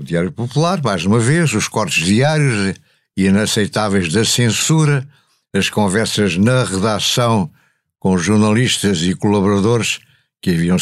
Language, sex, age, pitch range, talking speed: Portuguese, male, 60-79, 105-140 Hz, 120 wpm